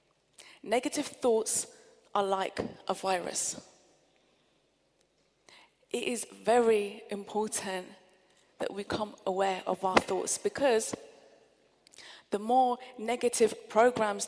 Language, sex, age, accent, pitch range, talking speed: English, female, 30-49, British, 210-265 Hz, 90 wpm